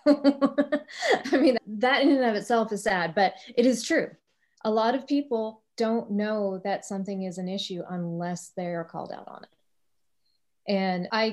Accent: American